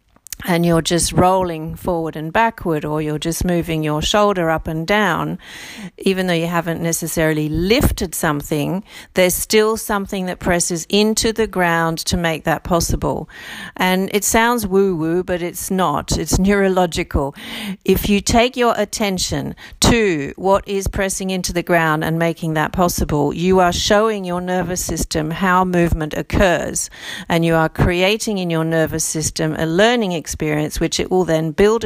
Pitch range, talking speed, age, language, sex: 160-200 Hz, 160 wpm, 50-69, English, female